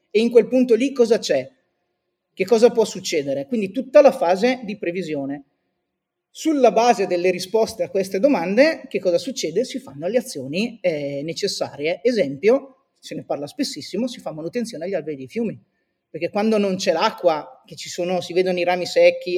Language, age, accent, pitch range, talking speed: Italian, 30-49, native, 170-235 Hz, 180 wpm